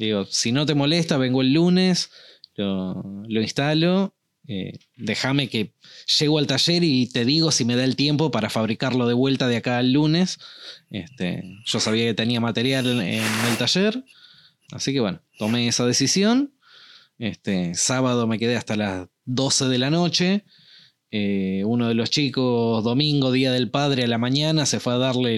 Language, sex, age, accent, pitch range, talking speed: Spanish, male, 20-39, Argentinian, 115-155 Hz, 175 wpm